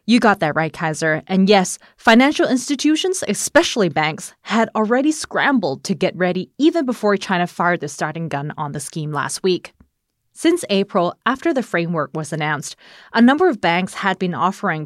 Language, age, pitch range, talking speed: English, 20-39, 170-230 Hz, 175 wpm